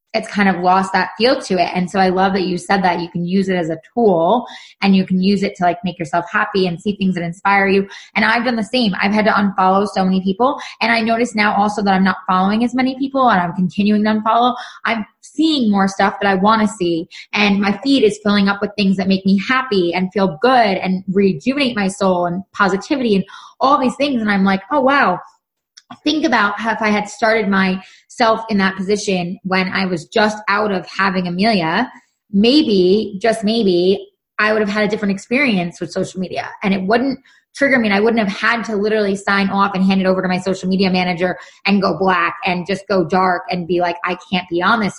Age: 20-39